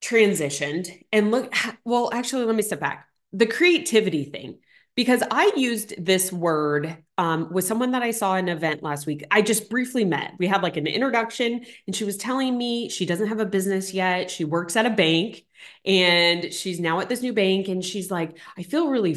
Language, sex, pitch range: English, female, 170-240 Hz